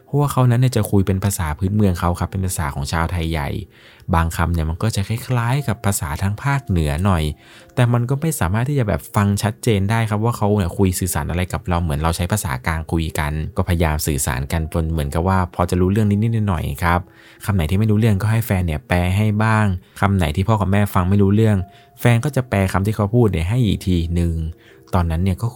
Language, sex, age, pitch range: Thai, male, 20-39, 80-105 Hz